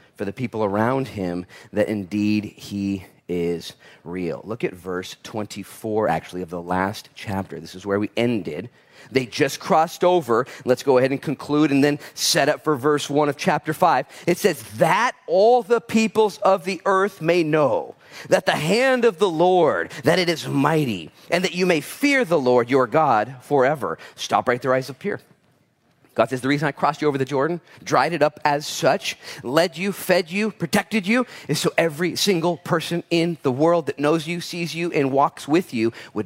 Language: English